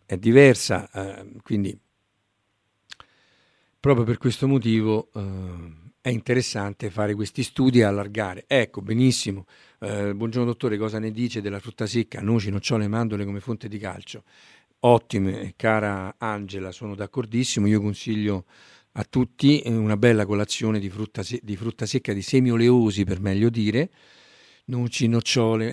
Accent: native